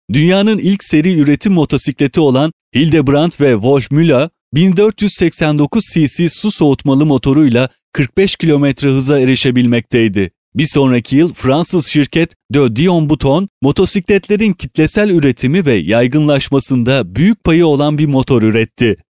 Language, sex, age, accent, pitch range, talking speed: Turkish, male, 30-49, native, 135-180 Hz, 115 wpm